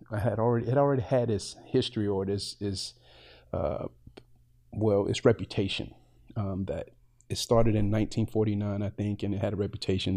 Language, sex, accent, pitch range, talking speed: English, male, American, 100-115 Hz, 170 wpm